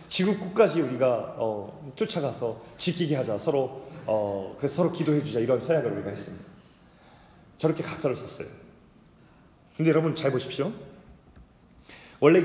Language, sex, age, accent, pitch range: Korean, male, 30-49, native, 155-195 Hz